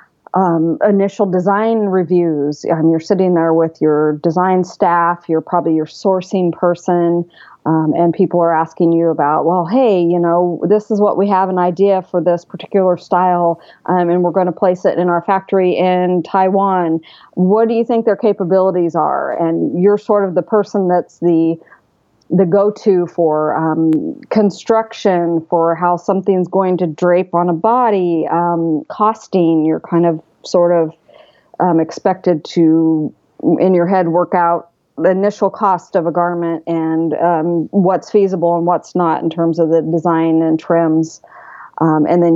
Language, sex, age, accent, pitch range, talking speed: English, female, 40-59, American, 165-190 Hz, 165 wpm